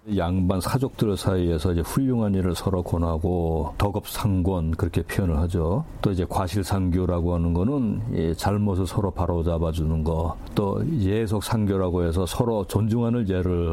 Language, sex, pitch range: Korean, male, 85-110 Hz